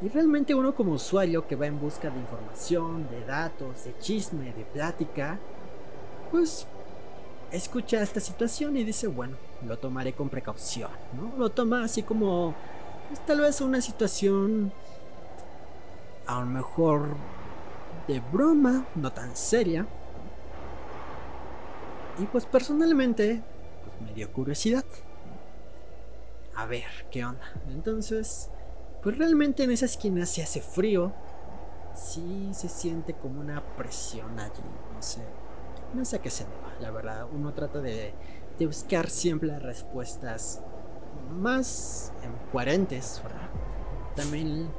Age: 30-49